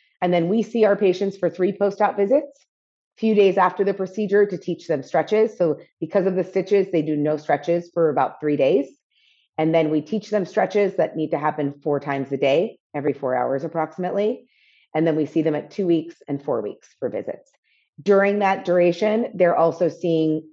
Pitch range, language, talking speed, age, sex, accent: 155-205 Hz, English, 205 wpm, 30-49, female, American